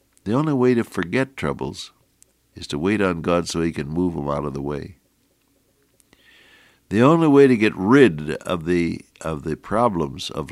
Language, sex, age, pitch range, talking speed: English, male, 60-79, 85-125 Hz, 185 wpm